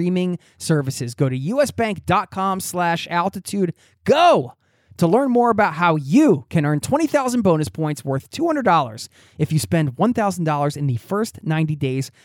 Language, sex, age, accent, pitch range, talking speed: English, male, 20-39, American, 145-225 Hz, 165 wpm